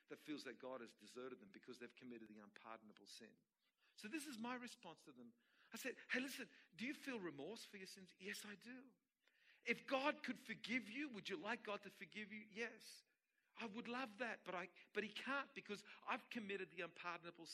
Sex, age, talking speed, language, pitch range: male, 50-69, 210 wpm, English, 190-265 Hz